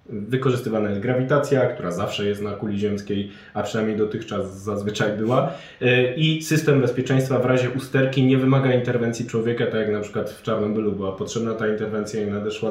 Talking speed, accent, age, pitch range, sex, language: 170 wpm, native, 20-39, 100-120 Hz, male, Polish